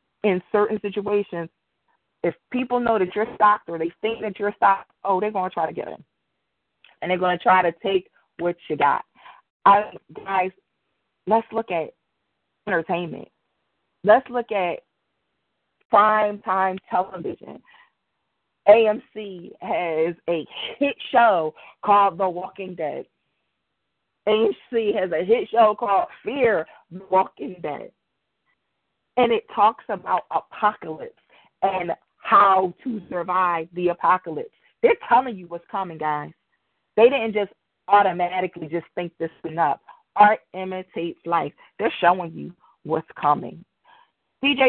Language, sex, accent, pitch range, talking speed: English, female, American, 180-225 Hz, 135 wpm